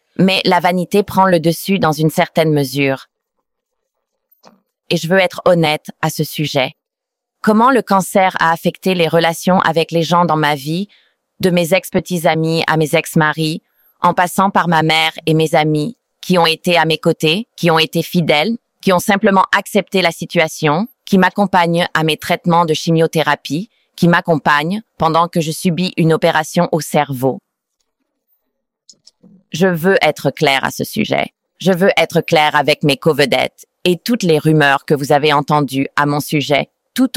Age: 30-49